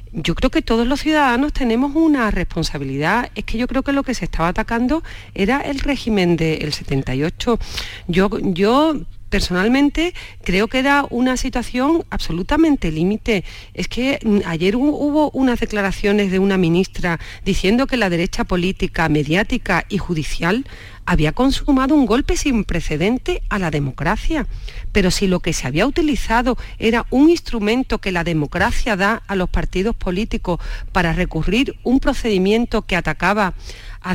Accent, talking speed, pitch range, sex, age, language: Spanish, 150 wpm, 170-250 Hz, female, 40-59, Spanish